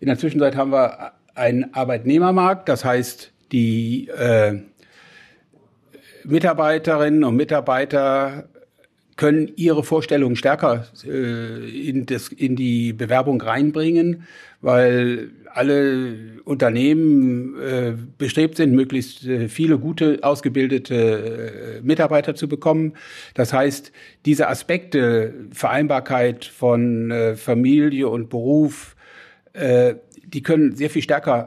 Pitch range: 125-150 Hz